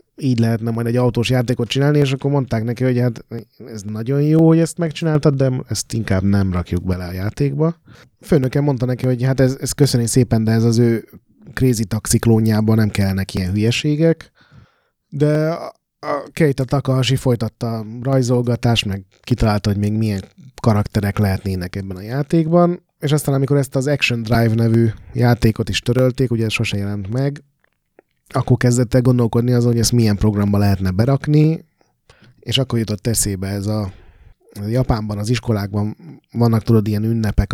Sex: male